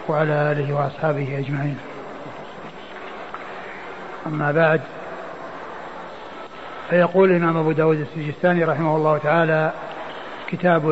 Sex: male